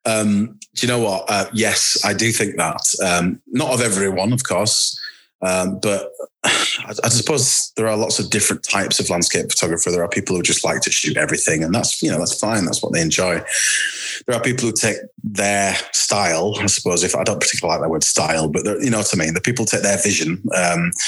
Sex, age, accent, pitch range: male, 30-49, British, 85-110 Hz